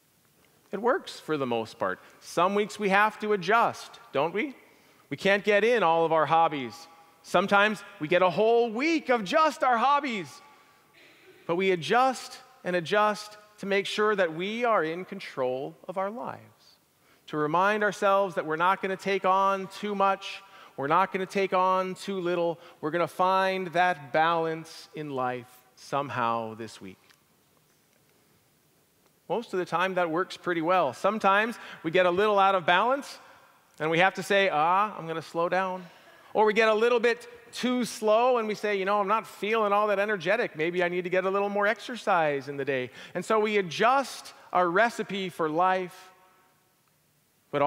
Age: 40-59